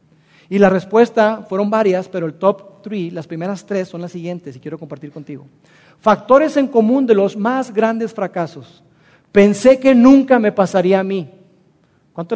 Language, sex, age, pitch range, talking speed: Spanish, male, 40-59, 160-210 Hz, 170 wpm